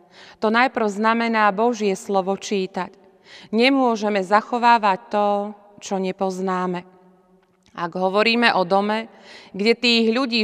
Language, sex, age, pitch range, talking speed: Slovak, female, 30-49, 190-220 Hz, 105 wpm